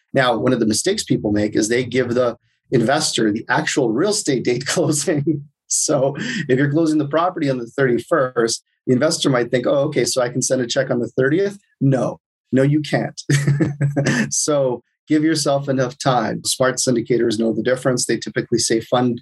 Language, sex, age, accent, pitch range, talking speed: English, male, 30-49, American, 115-135 Hz, 185 wpm